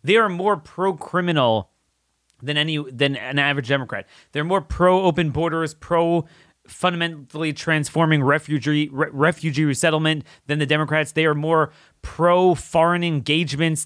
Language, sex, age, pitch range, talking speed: English, male, 30-49, 130-170 Hz, 115 wpm